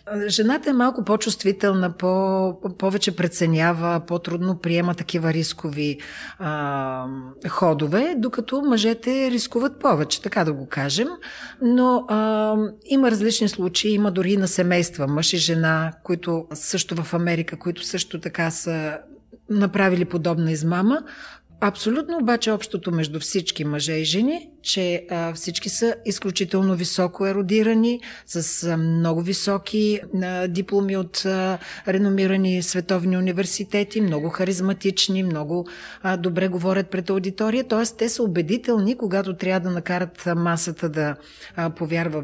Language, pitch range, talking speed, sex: Bulgarian, 170-210 Hz, 125 wpm, female